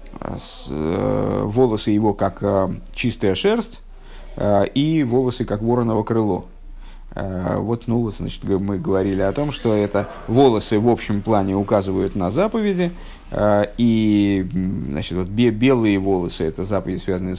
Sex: male